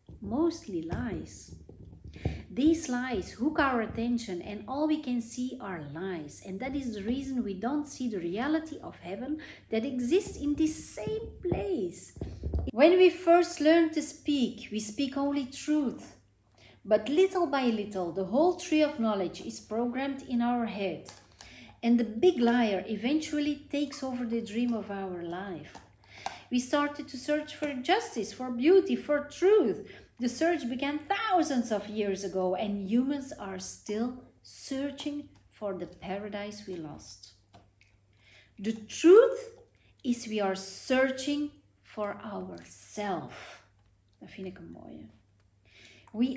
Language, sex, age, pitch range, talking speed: Dutch, female, 40-59, 185-290 Hz, 135 wpm